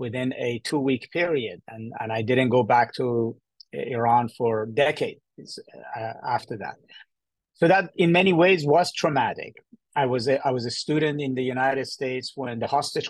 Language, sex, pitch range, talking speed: English, male, 120-145 Hz, 185 wpm